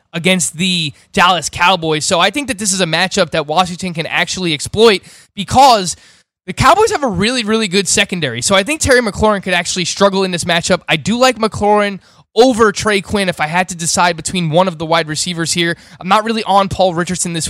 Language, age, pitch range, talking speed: English, 20-39, 170-205 Hz, 215 wpm